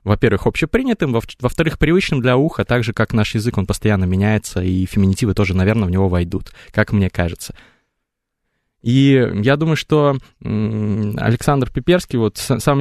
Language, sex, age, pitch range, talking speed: Russian, male, 20-39, 100-125 Hz, 150 wpm